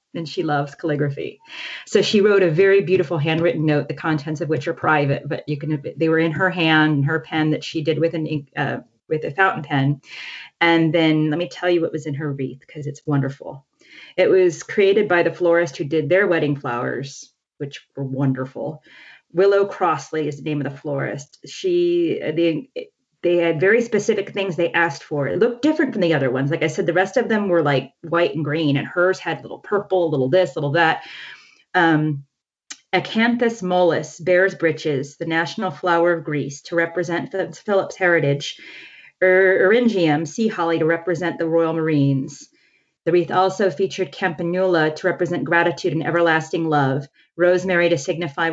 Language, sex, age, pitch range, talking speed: English, female, 30-49, 150-185 Hz, 190 wpm